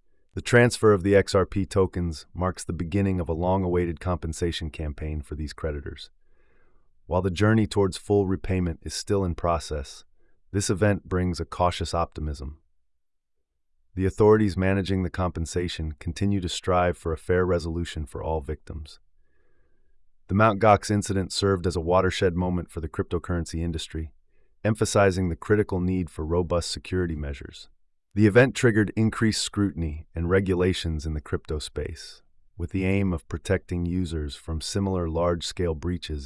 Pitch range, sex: 80-95 Hz, male